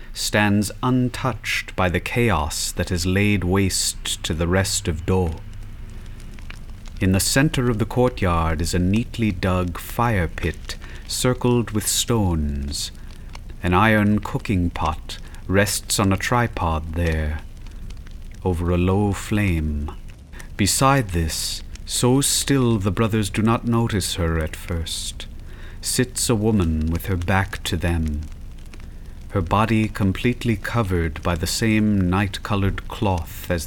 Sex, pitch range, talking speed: male, 85-110 Hz, 130 wpm